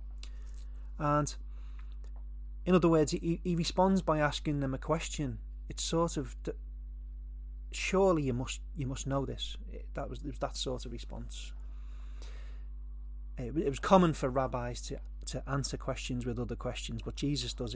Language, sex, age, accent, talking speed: English, male, 30-49, British, 150 wpm